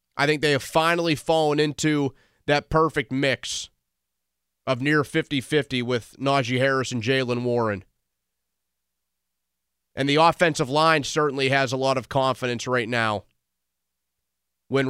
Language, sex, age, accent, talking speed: English, male, 30-49, American, 130 wpm